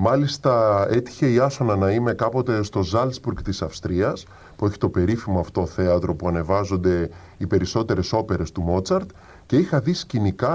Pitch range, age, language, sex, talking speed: 95-135 Hz, 20-39, Greek, female, 160 wpm